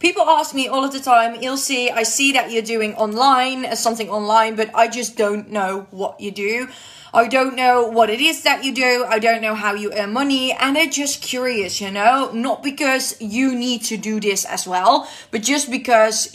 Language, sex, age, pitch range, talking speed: Dutch, female, 20-39, 205-245 Hz, 215 wpm